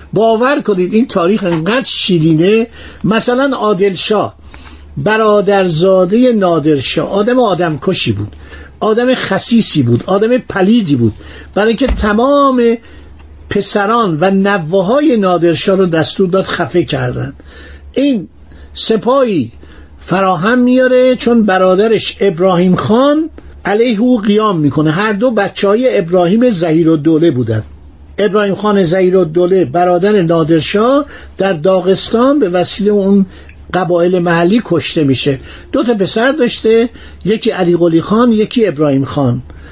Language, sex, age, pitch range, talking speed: Persian, male, 50-69, 165-225 Hz, 115 wpm